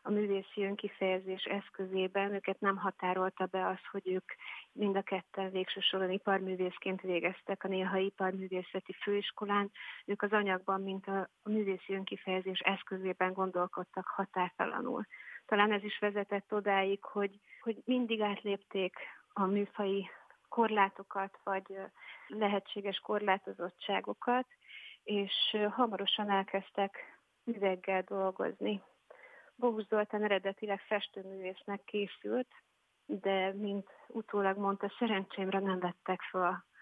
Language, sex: Hungarian, female